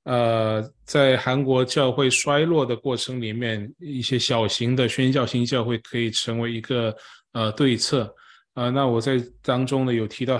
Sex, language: male, Chinese